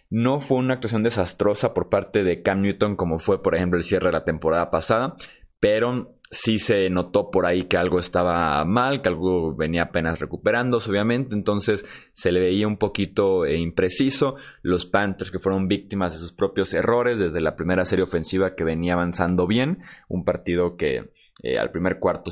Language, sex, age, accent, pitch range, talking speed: Spanish, male, 20-39, Mexican, 90-115 Hz, 185 wpm